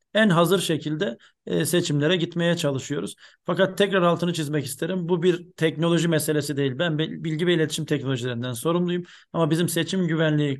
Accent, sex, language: native, male, Turkish